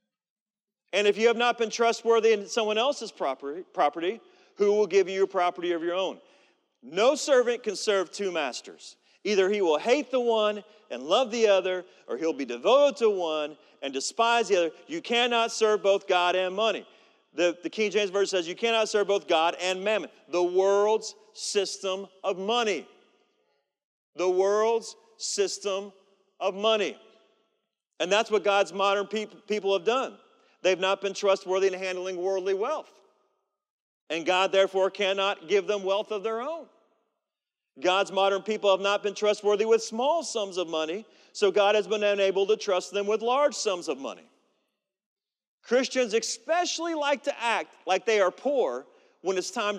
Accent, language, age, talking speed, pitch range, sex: American, English, 40-59, 170 wpm, 190-230 Hz, male